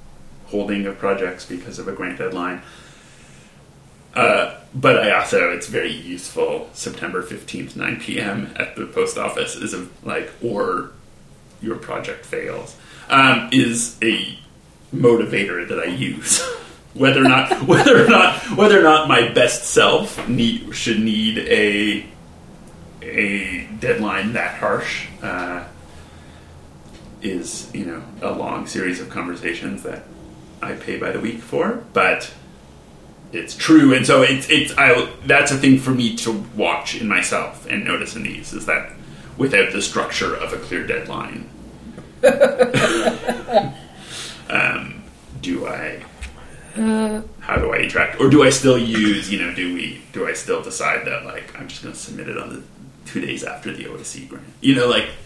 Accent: American